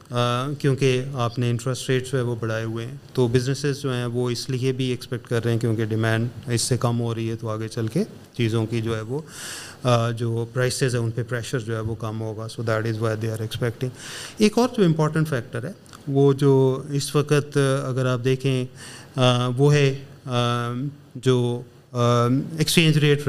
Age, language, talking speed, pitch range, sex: 30-49, Urdu, 155 wpm, 120-140 Hz, male